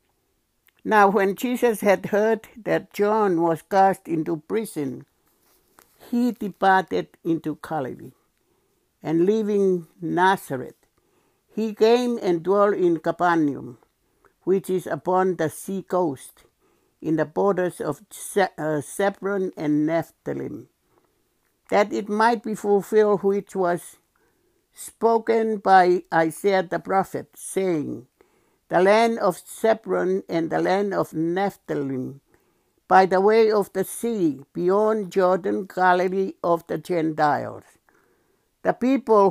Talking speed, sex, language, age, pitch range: 115 wpm, male, English, 60-79, 165-210 Hz